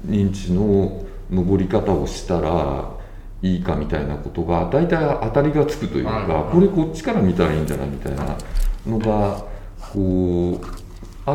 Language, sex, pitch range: Japanese, male, 85-130 Hz